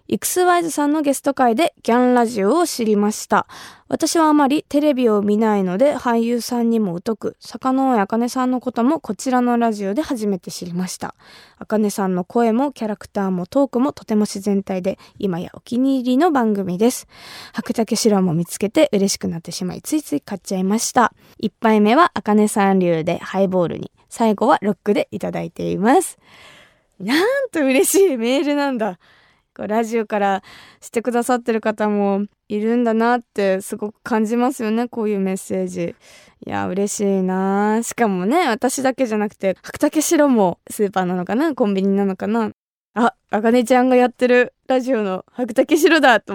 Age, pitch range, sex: 20-39, 195-255 Hz, female